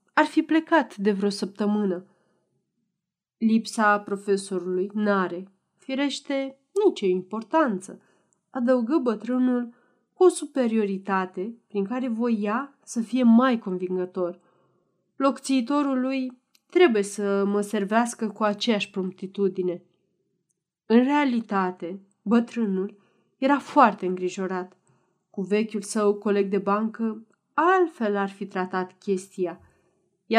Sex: female